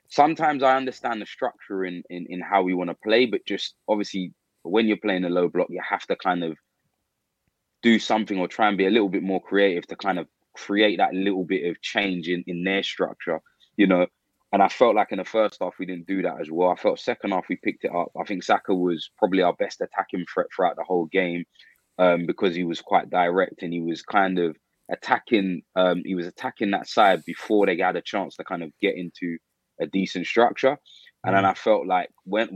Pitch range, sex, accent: 85-95 Hz, male, British